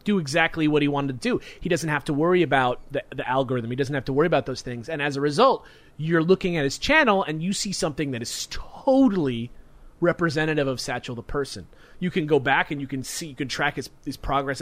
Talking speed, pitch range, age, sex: 240 wpm, 145-195 Hz, 30-49, male